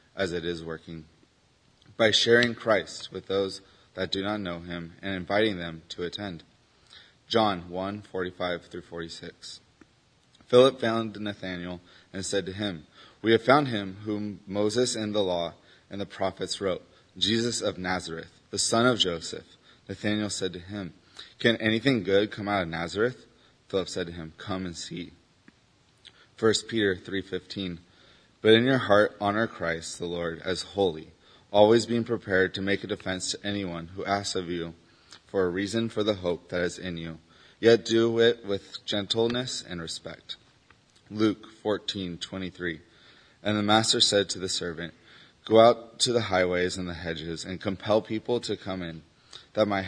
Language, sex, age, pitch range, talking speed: English, male, 30-49, 90-110 Hz, 170 wpm